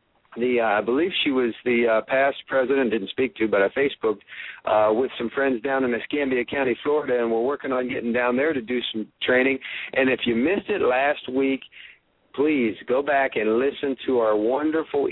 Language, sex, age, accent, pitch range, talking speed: English, male, 50-69, American, 115-130 Hz, 205 wpm